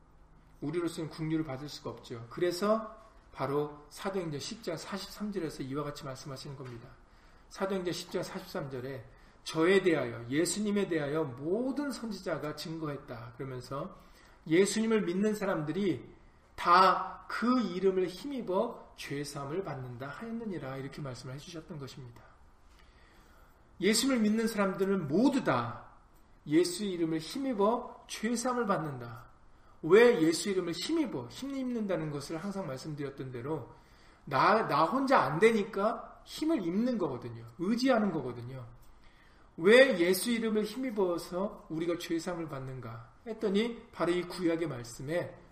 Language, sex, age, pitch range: Korean, male, 40-59, 145-210 Hz